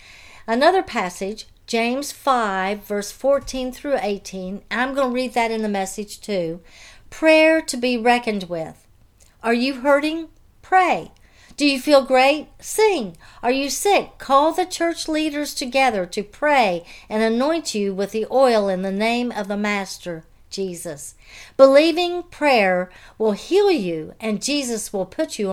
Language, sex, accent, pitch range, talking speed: English, female, American, 195-280 Hz, 150 wpm